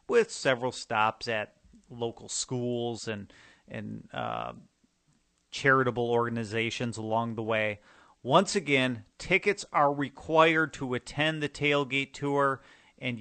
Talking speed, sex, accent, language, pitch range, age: 115 wpm, male, American, English, 115-145 Hz, 40-59